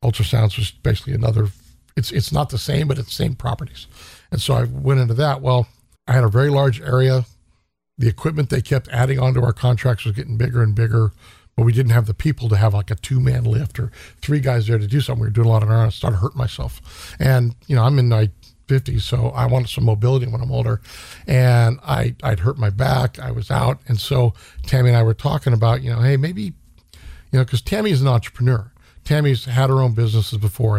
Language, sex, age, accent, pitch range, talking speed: English, male, 50-69, American, 110-130 Hz, 230 wpm